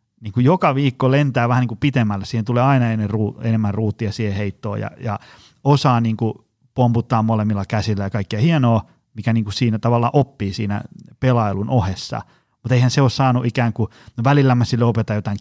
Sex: male